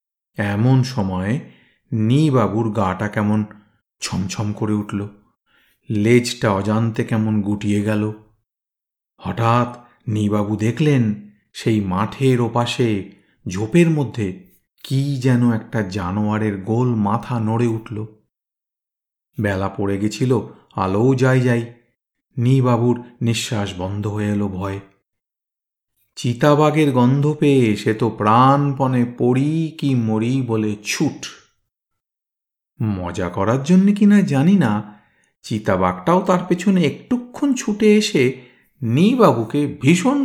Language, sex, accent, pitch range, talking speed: Bengali, male, native, 105-135 Hz, 95 wpm